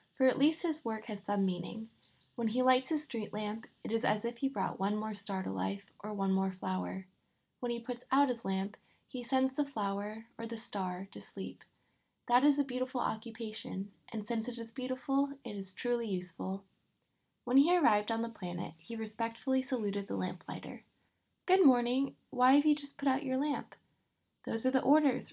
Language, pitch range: English, 195-265 Hz